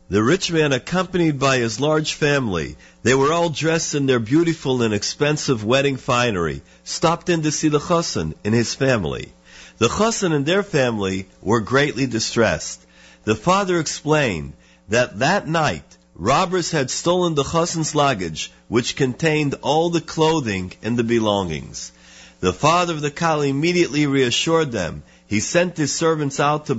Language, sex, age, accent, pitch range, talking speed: English, male, 50-69, American, 110-165 Hz, 155 wpm